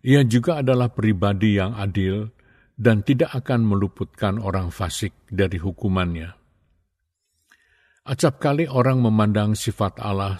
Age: 50-69